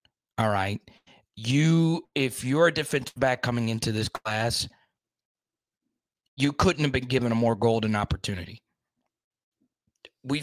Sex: male